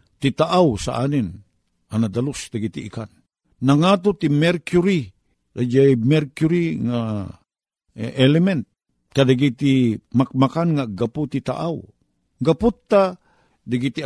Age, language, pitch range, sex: 50-69, Filipino, 110-150 Hz, male